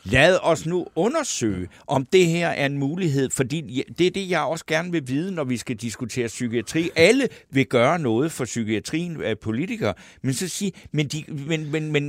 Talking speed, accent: 195 wpm, native